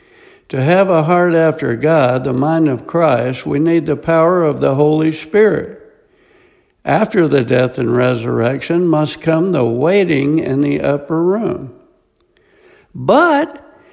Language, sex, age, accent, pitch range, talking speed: English, male, 60-79, American, 140-190 Hz, 140 wpm